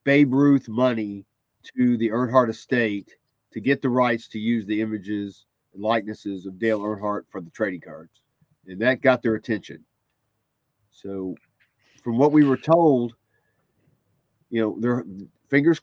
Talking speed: 150 wpm